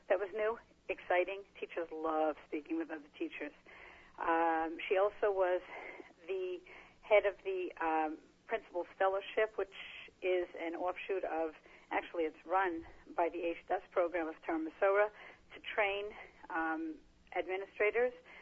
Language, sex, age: English, female, 50-69